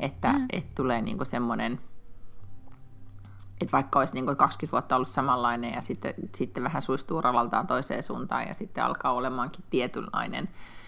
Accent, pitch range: native, 125-165 Hz